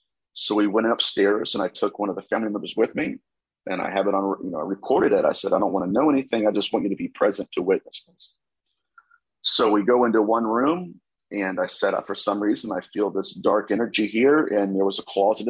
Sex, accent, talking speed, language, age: male, American, 250 wpm, English, 40-59